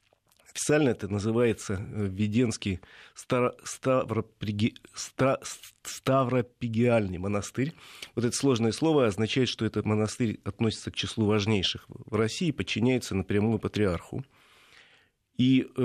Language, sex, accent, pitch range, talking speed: Russian, male, native, 105-125 Hz, 90 wpm